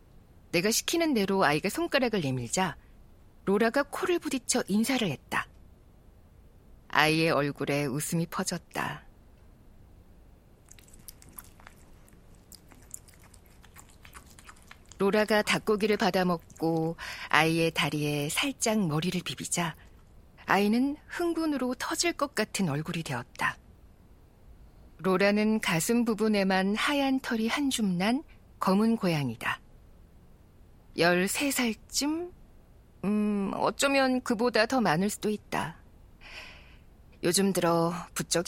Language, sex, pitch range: Korean, female, 145-235 Hz